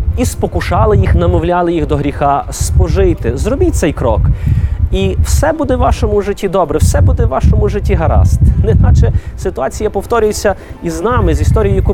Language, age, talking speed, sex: Ukrainian, 30-49, 160 wpm, male